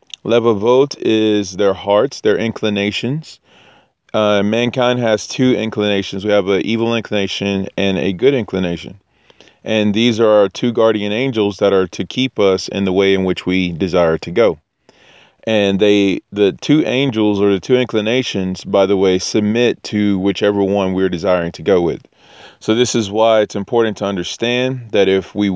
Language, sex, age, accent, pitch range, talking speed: English, male, 30-49, American, 95-115 Hz, 175 wpm